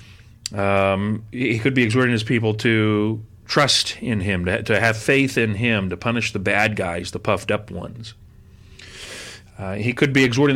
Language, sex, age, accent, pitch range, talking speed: English, male, 40-59, American, 100-130 Hz, 180 wpm